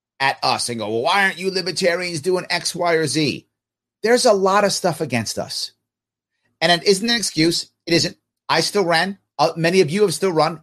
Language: English